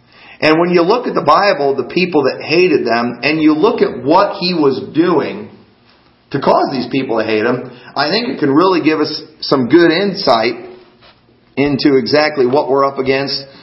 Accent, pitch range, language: American, 115-155 Hz, English